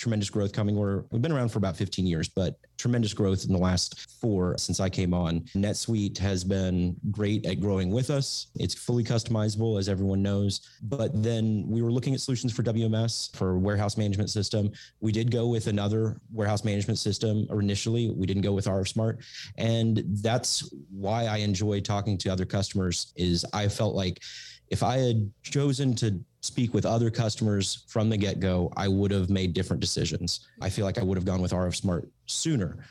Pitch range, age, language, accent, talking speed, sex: 95-115 Hz, 30-49, English, American, 195 wpm, male